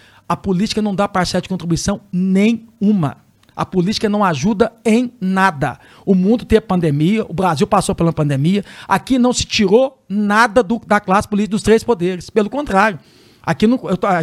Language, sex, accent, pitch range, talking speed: Portuguese, male, Brazilian, 190-245 Hz, 175 wpm